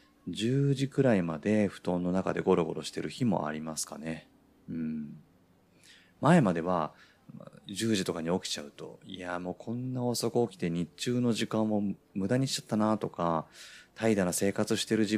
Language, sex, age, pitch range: Japanese, male, 30-49, 90-125 Hz